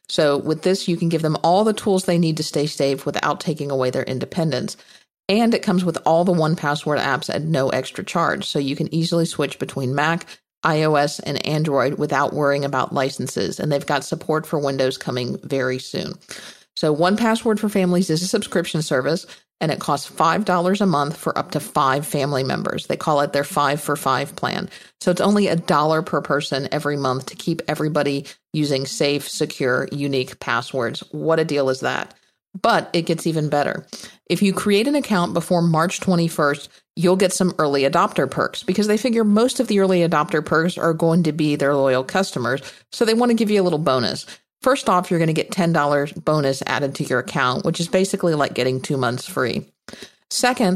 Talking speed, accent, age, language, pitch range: 200 wpm, American, 50-69, English, 145-185 Hz